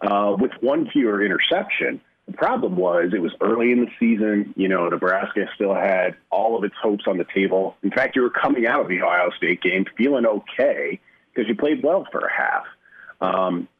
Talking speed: 205 wpm